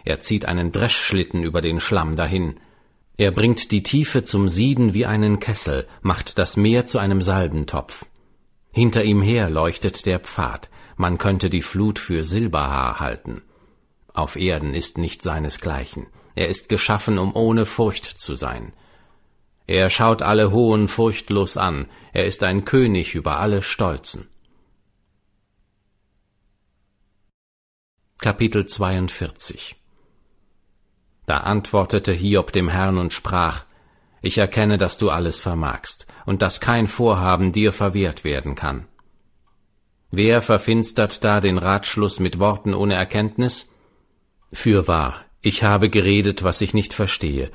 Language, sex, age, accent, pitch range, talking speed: German, male, 50-69, German, 85-105 Hz, 130 wpm